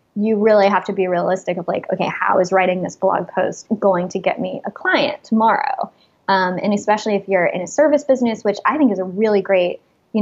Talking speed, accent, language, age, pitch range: 225 wpm, American, English, 10-29, 190-225 Hz